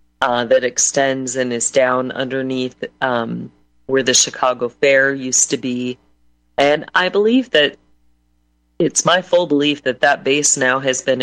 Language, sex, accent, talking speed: English, female, American, 155 wpm